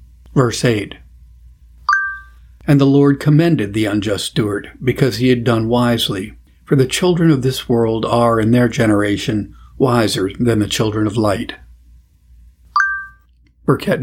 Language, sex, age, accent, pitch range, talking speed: English, male, 50-69, American, 105-135 Hz, 135 wpm